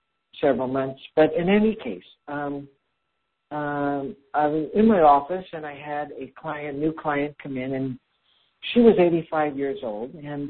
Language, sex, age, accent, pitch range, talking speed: English, male, 60-79, American, 130-160 Hz, 165 wpm